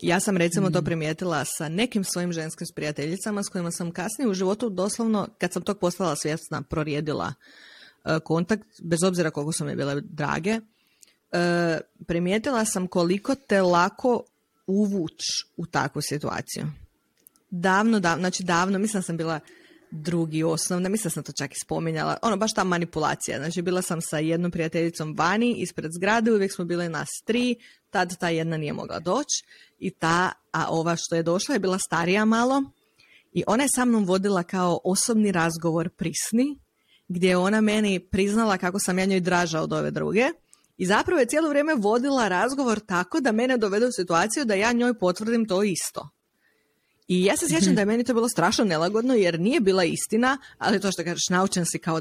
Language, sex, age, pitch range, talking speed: Croatian, female, 20-39, 170-215 Hz, 180 wpm